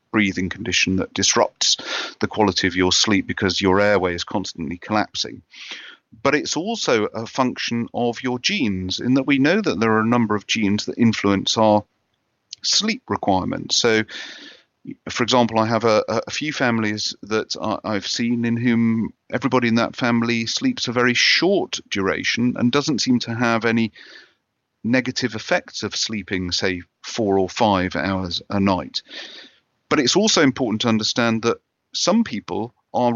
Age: 40-59